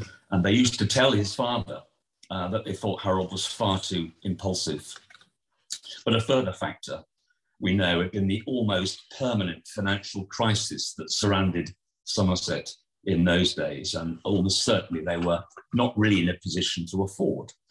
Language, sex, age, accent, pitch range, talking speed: English, male, 50-69, British, 95-125 Hz, 160 wpm